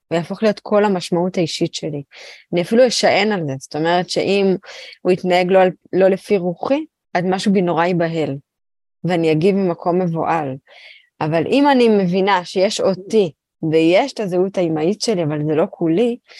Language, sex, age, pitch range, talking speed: Hebrew, female, 20-39, 165-205 Hz, 160 wpm